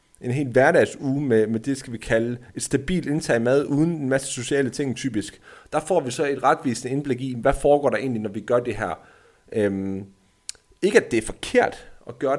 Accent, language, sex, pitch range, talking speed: native, Danish, male, 115-145 Hz, 225 wpm